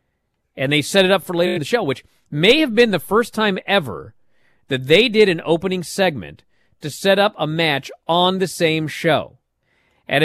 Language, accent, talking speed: English, American, 200 wpm